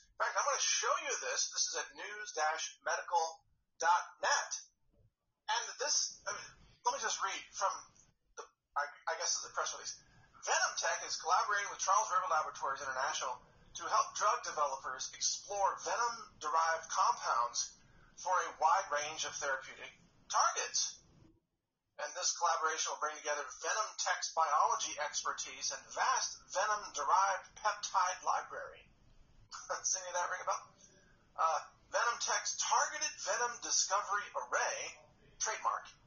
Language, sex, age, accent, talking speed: English, male, 30-49, American, 135 wpm